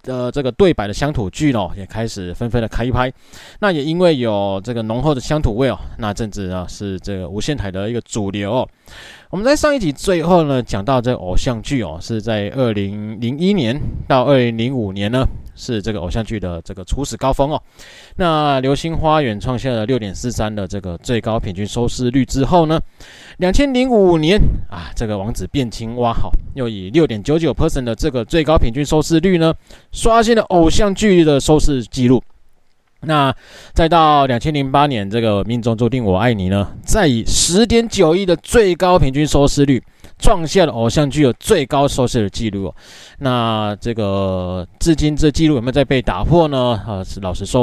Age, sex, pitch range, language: 20-39, male, 105-150 Hz, Chinese